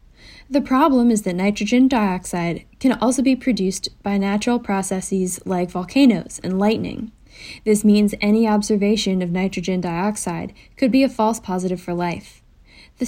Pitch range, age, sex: 190-230 Hz, 10-29, female